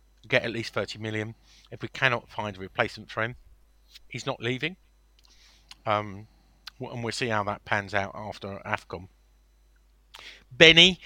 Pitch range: 100-125 Hz